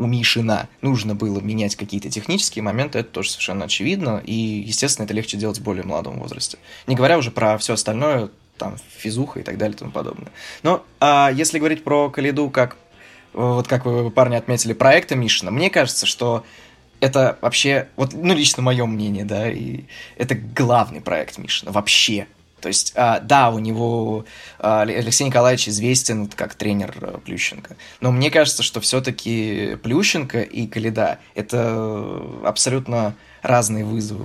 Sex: male